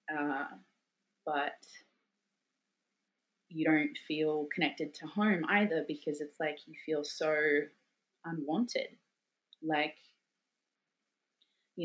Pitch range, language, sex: 155-190 Hz, English, female